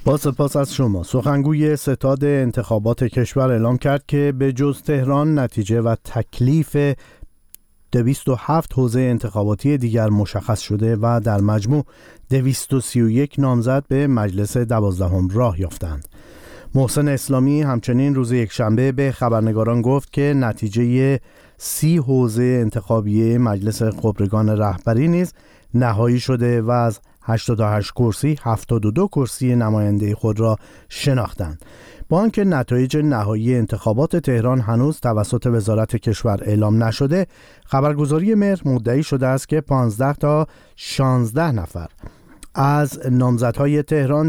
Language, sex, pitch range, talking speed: Persian, male, 115-140 Hz, 120 wpm